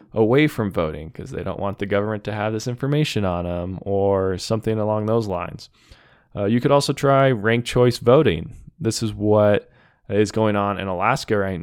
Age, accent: 20-39, American